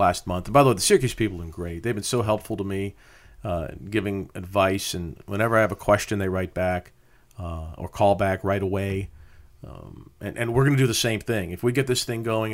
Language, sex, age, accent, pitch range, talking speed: English, male, 40-59, American, 100-120 Hz, 250 wpm